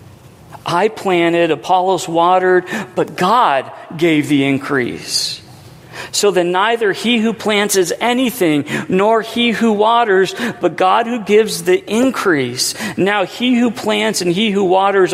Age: 50-69